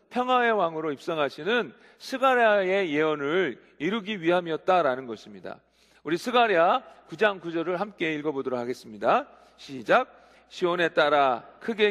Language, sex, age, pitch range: Korean, male, 40-59, 155-205 Hz